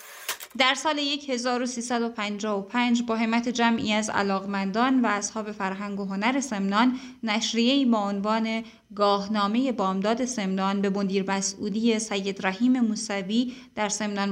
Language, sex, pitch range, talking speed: Persian, female, 205-245 Hz, 115 wpm